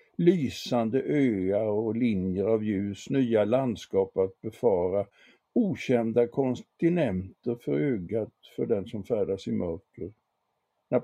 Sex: male